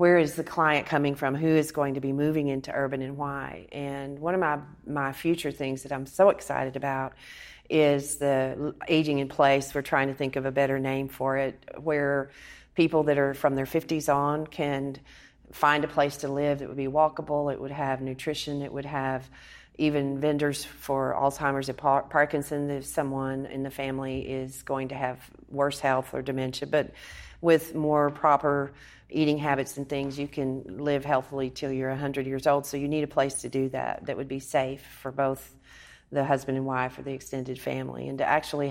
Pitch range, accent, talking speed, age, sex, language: 135-150 Hz, American, 200 wpm, 40-59, female, English